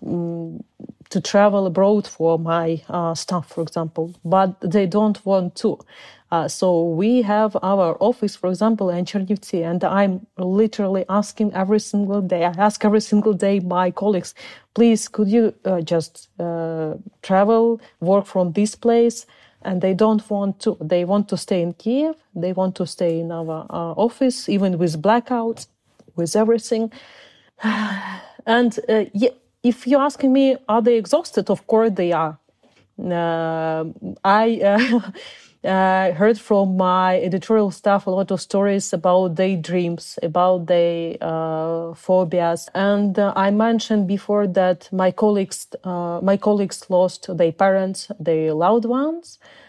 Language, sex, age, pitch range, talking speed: English, female, 40-59, 175-215 Hz, 150 wpm